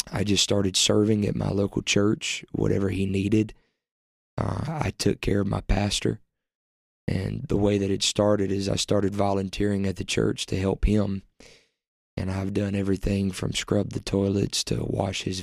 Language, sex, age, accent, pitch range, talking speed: English, male, 20-39, American, 95-100 Hz, 175 wpm